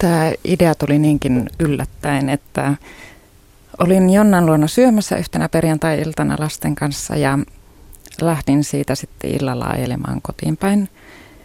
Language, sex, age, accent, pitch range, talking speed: Finnish, female, 30-49, native, 125-150 Hz, 115 wpm